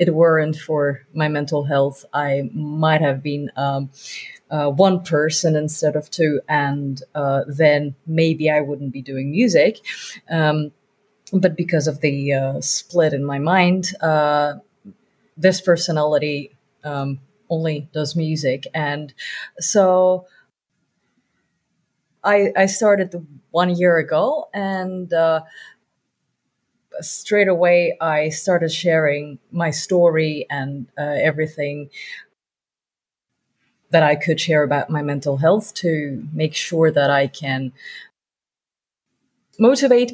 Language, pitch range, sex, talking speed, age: English, 150-195 Hz, female, 115 wpm, 30-49